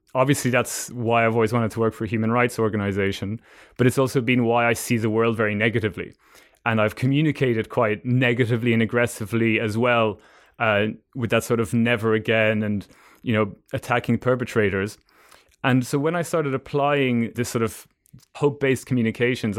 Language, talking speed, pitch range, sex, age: English, 175 wpm, 110-125 Hz, male, 20-39